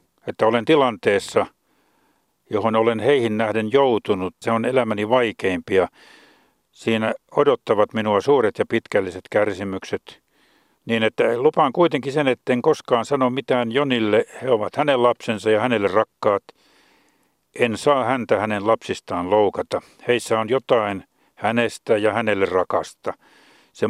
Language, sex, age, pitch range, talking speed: Finnish, male, 50-69, 105-130 Hz, 125 wpm